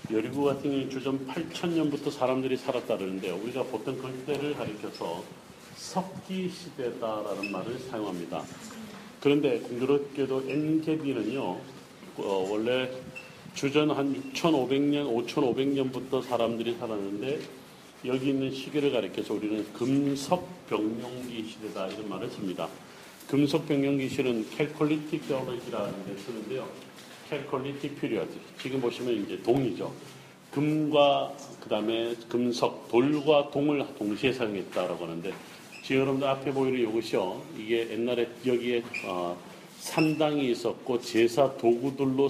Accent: native